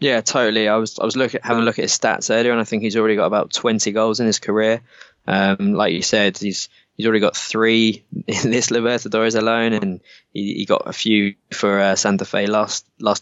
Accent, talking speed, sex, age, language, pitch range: British, 230 wpm, male, 20-39, English, 100-120 Hz